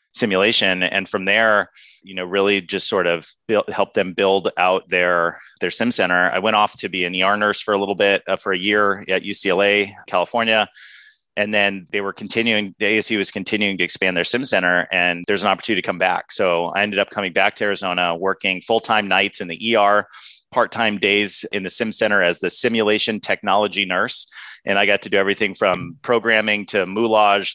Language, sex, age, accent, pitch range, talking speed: English, male, 30-49, American, 90-105 Hz, 205 wpm